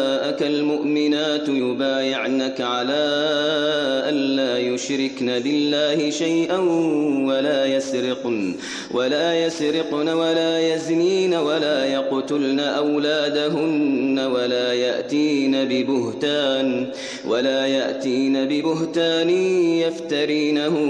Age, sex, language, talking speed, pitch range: 30-49, male, English, 70 wpm, 135-160 Hz